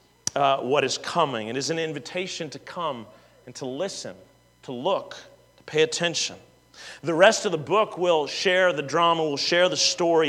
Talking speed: 180 wpm